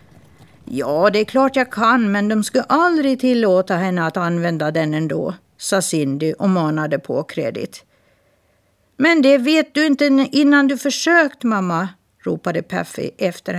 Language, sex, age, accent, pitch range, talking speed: Swedish, female, 50-69, native, 155-230 Hz, 150 wpm